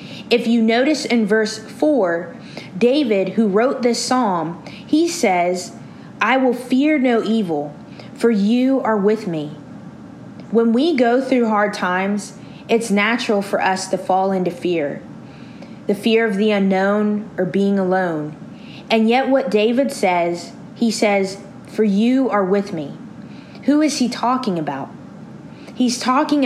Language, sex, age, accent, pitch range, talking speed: English, female, 20-39, American, 190-240 Hz, 145 wpm